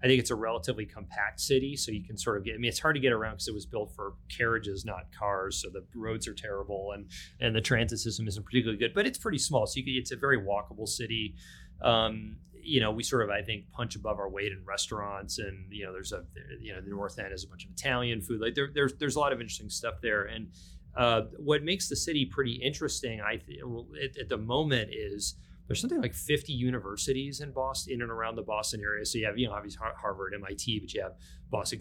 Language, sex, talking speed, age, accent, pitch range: English, male, 245 wpm, 30-49, American, 100-125 Hz